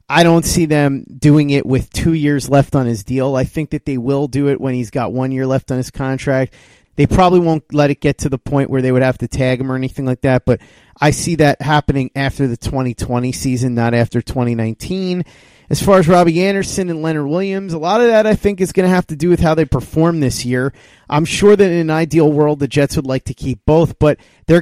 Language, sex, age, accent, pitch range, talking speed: English, male, 30-49, American, 130-165 Hz, 250 wpm